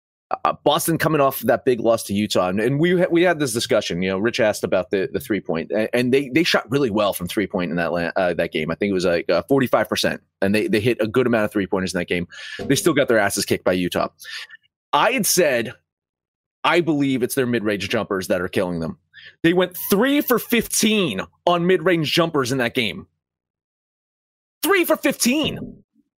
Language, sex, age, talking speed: English, male, 30-49, 230 wpm